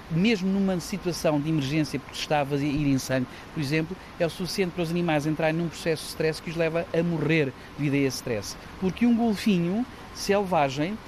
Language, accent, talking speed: Portuguese, Portuguese, 200 wpm